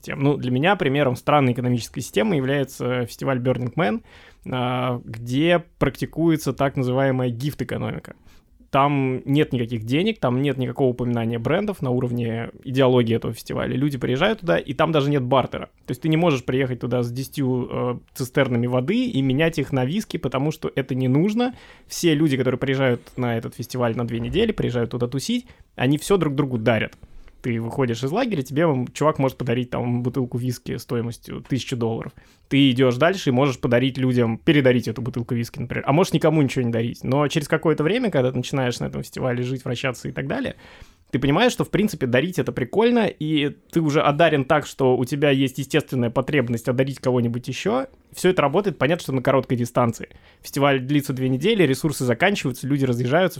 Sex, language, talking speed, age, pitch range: male, Russian, 180 wpm, 20-39, 125-150 Hz